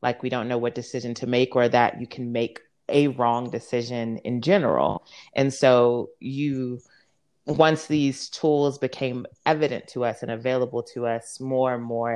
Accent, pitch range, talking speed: American, 115-130 Hz, 175 wpm